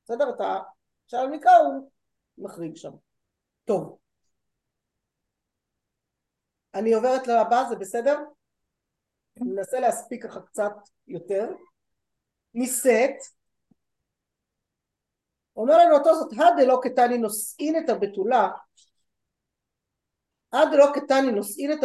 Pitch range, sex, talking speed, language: 210-280 Hz, female, 95 wpm, Hebrew